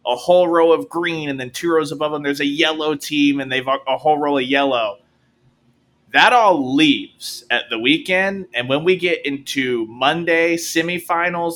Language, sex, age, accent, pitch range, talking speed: English, male, 20-39, American, 130-165 Hz, 180 wpm